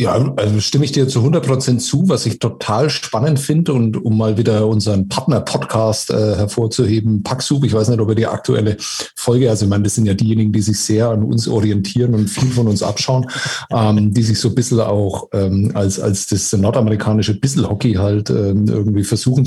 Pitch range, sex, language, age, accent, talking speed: 110-135 Hz, male, German, 50-69, German, 210 wpm